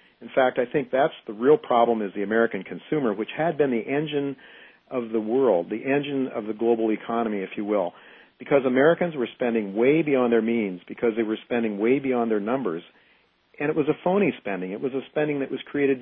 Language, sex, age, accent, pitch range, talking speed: English, male, 50-69, American, 110-140 Hz, 215 wpm